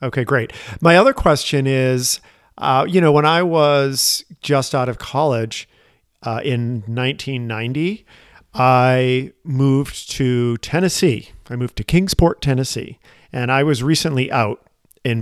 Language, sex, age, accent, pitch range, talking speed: English, male, 40-59, American, 115-140 Hz, 135 wpm